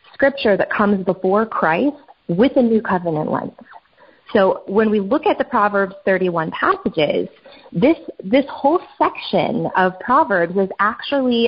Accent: American